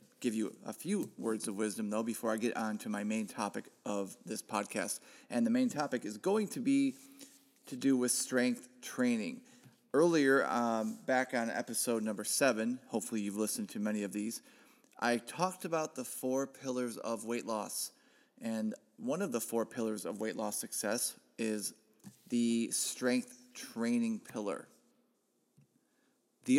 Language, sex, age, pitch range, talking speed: English, male, 30-49, 110-165 Hz, 160 wpm